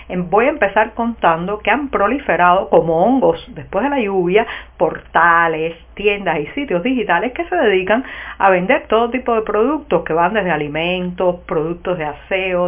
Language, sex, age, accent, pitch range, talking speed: Spanish, female, 50-69, American, 180-240 Hz, 160 wpm